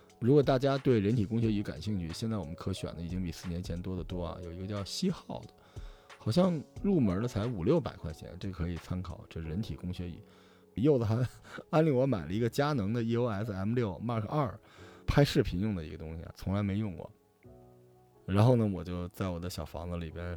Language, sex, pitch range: Chinese, male, 90-115 Hz